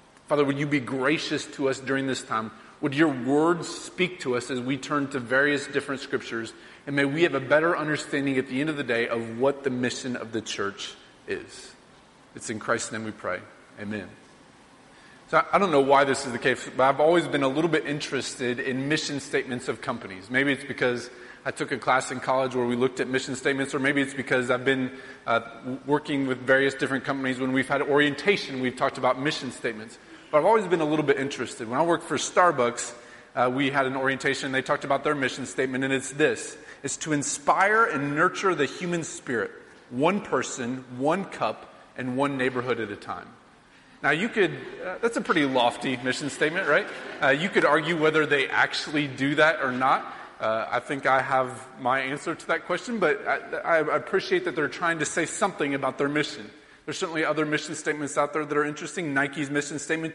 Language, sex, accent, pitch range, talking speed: English, male, American, 130-150 Hz, 210 wpm